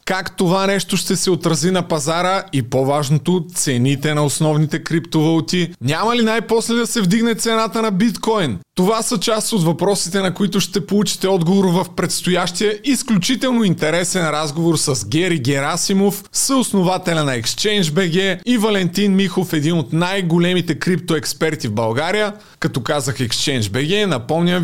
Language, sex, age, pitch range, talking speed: Bulgarian, male, 30-49, 155-200 Hz, 140 wpm